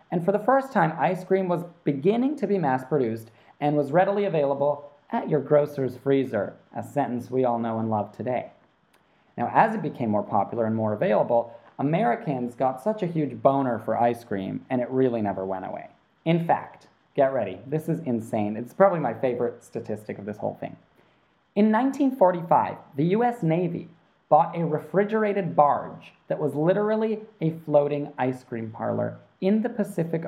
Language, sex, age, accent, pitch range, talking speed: English, male, 30-49, American, 125-185 Hz, 175 wpm